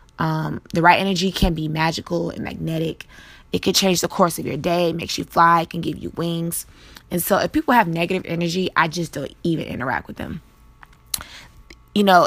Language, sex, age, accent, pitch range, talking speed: English, female, 20-39, American, 160-190 Hz, 205 wpm